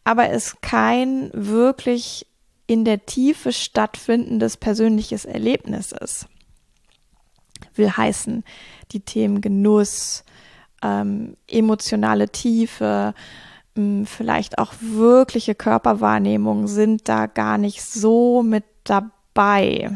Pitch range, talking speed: 180-230 Hz, 90 wpm